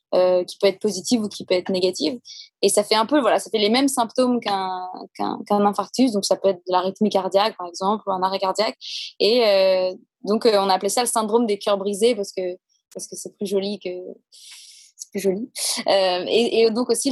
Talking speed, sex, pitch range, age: 235 wpm, female, 195-235 Hz, 20-39